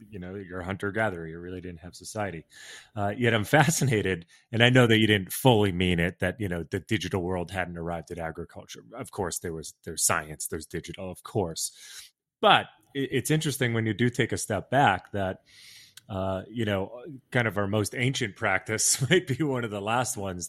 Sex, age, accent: male, 30-49, American